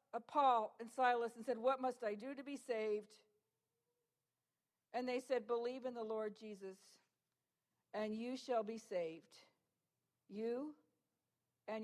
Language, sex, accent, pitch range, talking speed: English, female, American, 215-265 Hz, 135 wpm